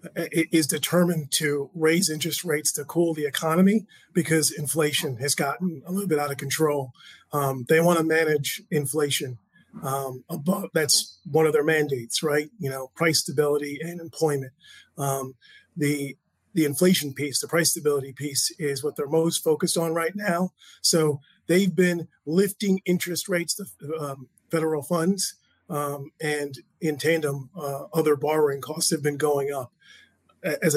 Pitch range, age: 145-170 Hz, 30-49